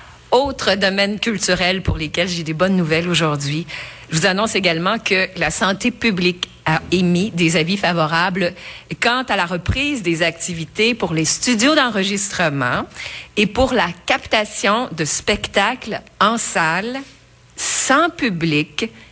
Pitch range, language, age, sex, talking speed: 160-205 Hz, French, 50-69, female, 135 wpm